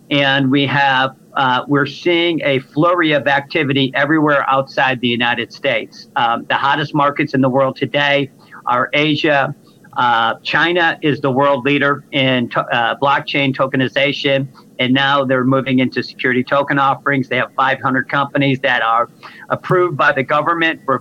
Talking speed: 155 wpm